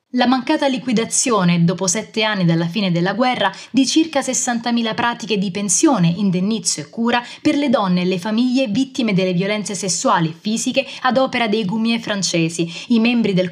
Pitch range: 195-255 Hz